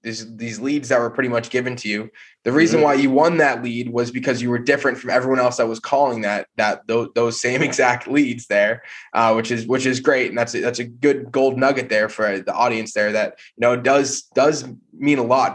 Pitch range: 115-135 Hz